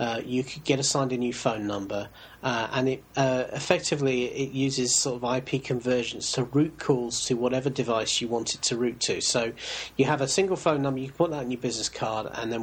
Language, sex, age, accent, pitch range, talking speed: English, male, 40-59, British, 120-150 Hz, 235 wpm